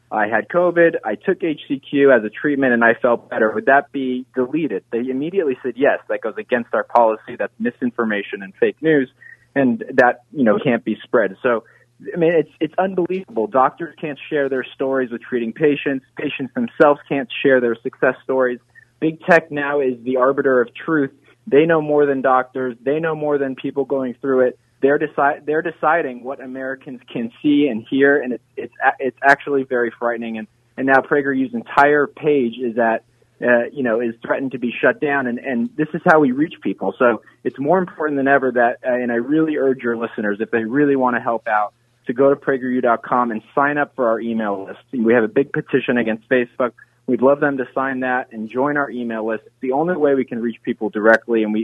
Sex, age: male, 20-39